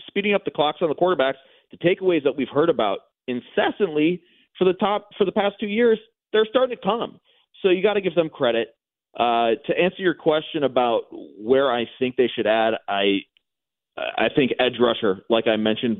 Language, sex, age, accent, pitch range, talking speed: English, male, 30-49, American, 120-175 Hz, 195 wpm